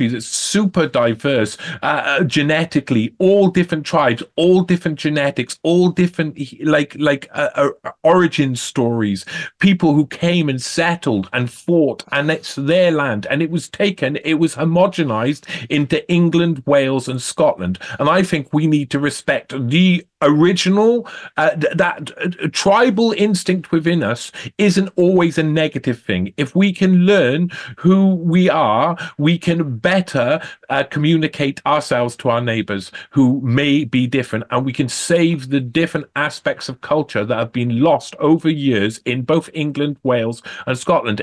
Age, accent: 40-59, British